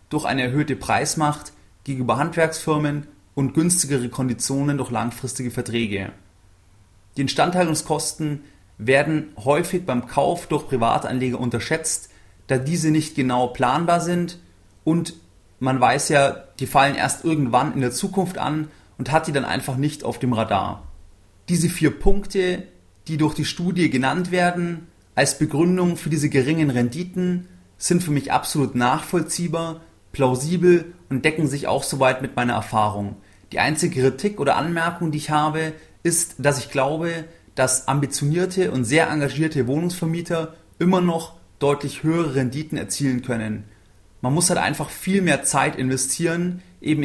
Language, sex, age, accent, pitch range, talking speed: German, male, 30-49, German, 130-160 Hz, 140 wpm